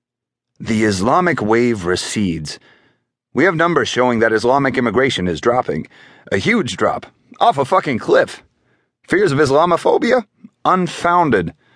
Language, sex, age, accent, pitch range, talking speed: English, male, 30-49, American, 105-145 Hz, 120 wpm